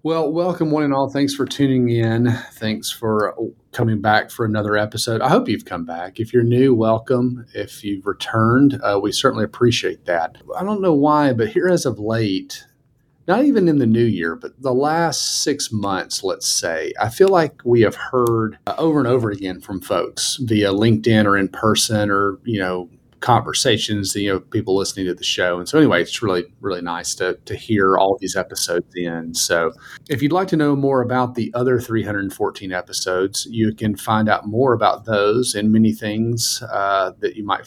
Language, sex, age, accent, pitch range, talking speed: English, male, 40-59, American, 100-125 Hz, 200 wpm